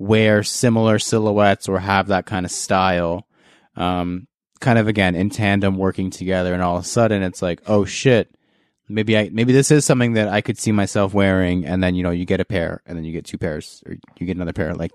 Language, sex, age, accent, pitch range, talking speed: English, male, 20-39, American, 90-110 Hz, 235 wpm